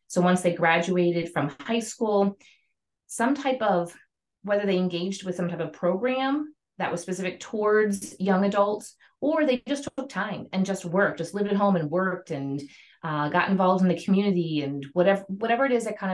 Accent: American